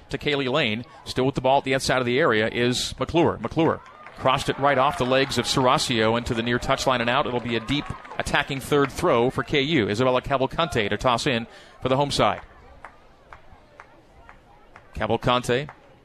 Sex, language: male, English